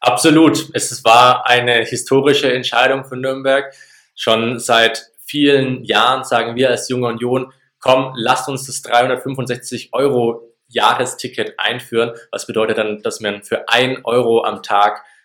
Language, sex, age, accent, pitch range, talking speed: German, male, 20-39, German, 115-135 Hz, 130 wpm